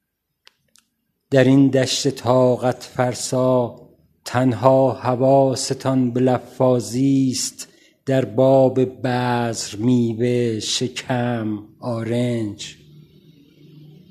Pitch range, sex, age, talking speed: 120-140 Hz, male, 50-69, 65 wpm